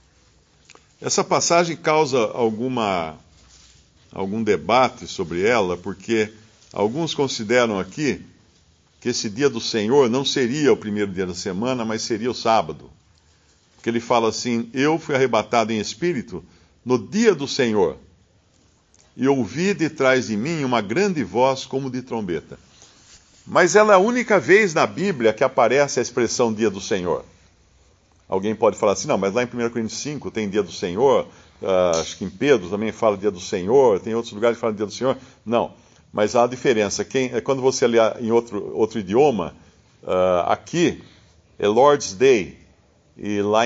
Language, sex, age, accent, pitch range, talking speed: Portuguese, male, 50-69, Brazilian, 105-135 Hz, 165 wpm